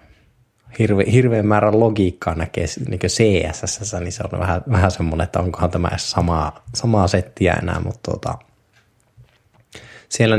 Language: Finnish